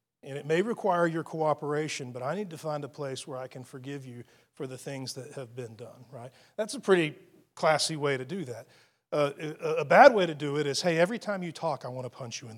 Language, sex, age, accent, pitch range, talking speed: English, male, 40-59, American, 135-190 Hz, 255 wpm